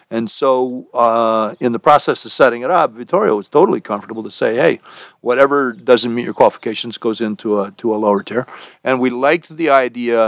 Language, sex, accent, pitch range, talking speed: English, male, American, 110-130 Hz, 200 wpm